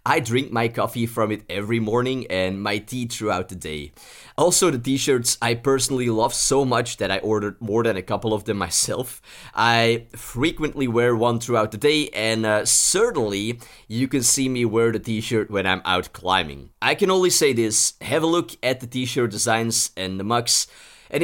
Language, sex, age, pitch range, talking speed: English, male, 30-49, 110-150 Hz, 195 wpm